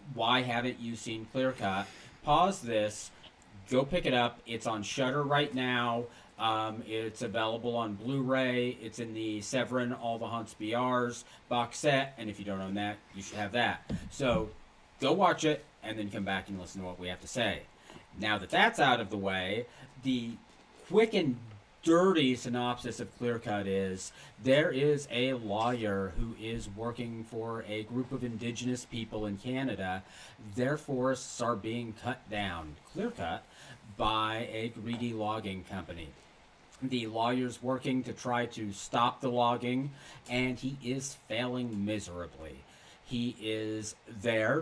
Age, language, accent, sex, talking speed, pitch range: 40-59, English, American, male, 155 wpm, 105-125 Hz